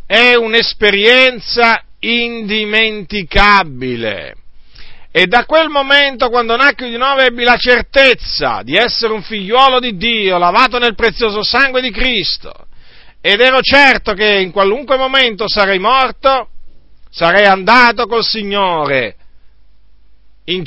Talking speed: 115 wpm